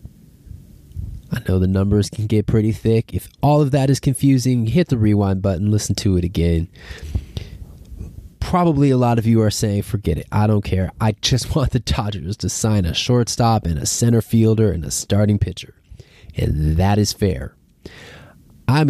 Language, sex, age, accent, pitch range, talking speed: English, male, 20-39, American, 90-115 Hz, 180 wpm